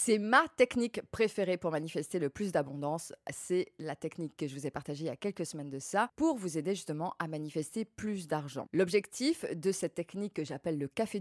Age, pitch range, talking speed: 20-39, 155-200 Hz, 215 wpm